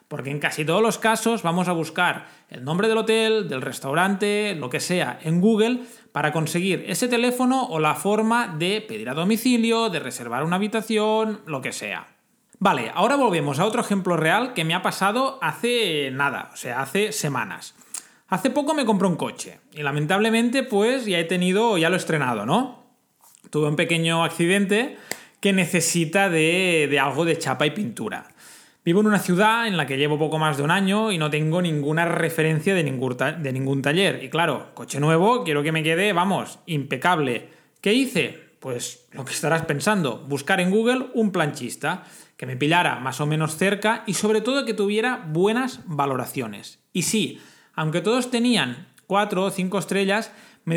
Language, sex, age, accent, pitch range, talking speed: Spanish, male, 20-39, Spanish, 150-215 Hz, 185 wpm